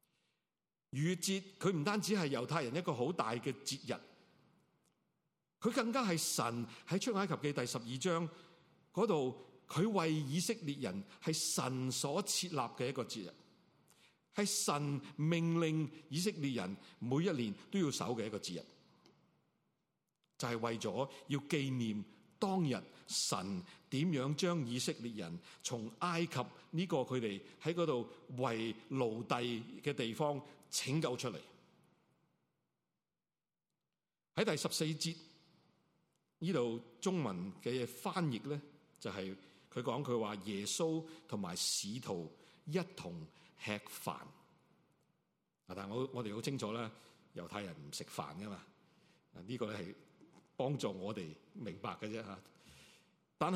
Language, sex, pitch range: Chinese, male, 125-175 Hz